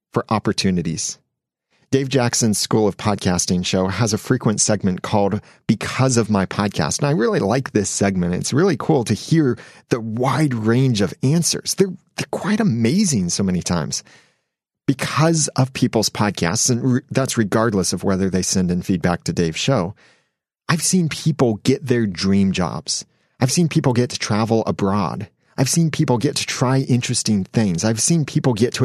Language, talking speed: English, 170 wpm